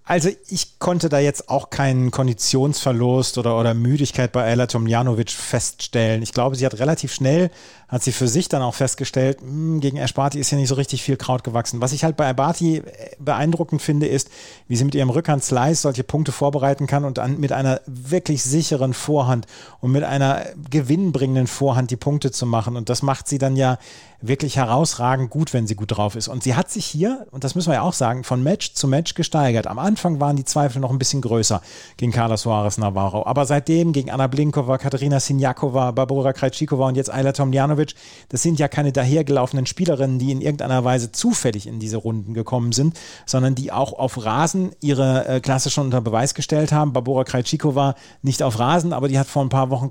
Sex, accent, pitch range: male, German, 125-150 Hz